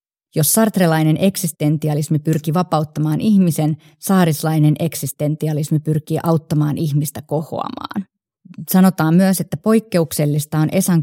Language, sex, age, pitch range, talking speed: Finnish, female, 30-49, 155-180 Hz, 100 wpm